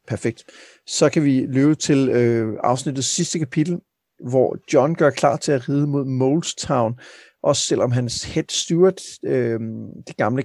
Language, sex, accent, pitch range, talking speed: Danish, male, native, 130-165 Hz, 160 wpm